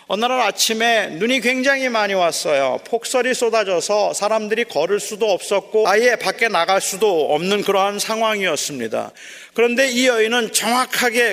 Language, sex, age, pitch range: Korean, male, 40-59, 205-250 Hz